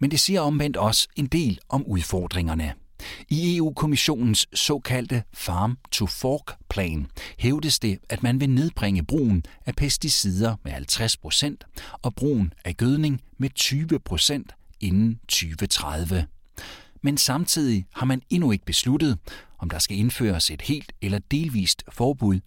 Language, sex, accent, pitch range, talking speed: Danish, male, native, 90-135 Hz, 135 wpm